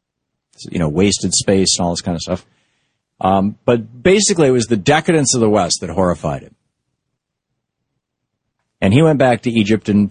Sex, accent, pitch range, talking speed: male, American, 100-135 Hz, 180 wpm